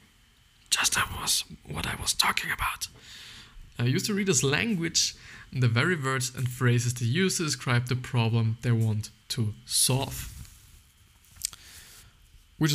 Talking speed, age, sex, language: 145 wpm, 20-39, male, English